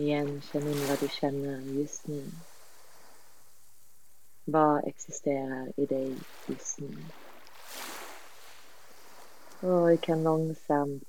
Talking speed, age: 95 wpm, 30-49